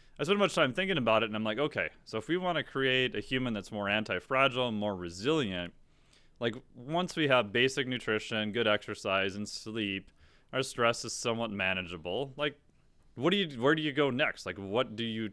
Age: 30-49